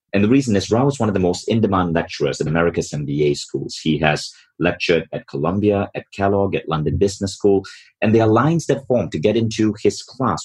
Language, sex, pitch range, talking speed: English, male, 100-125 Hz, 220 wpm